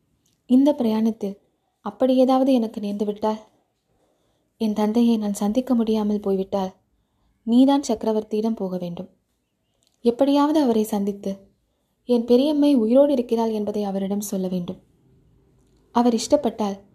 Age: 20-39